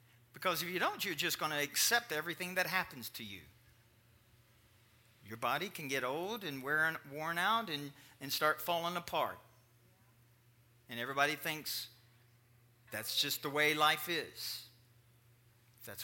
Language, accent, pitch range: English, American, 120-160 Hz